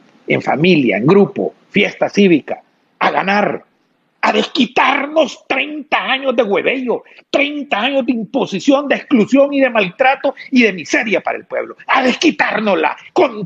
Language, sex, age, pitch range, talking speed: Spanish, male, 50-69, 195-275 Hz, 145 wpm